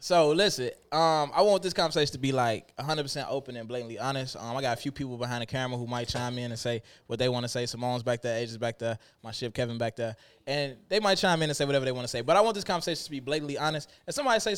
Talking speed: 290 wpm